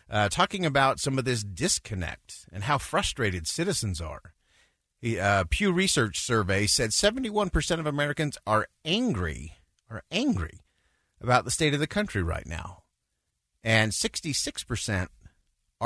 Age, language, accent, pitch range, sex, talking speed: 50-69, English, American, 100-150 Hz, male, 130 wpm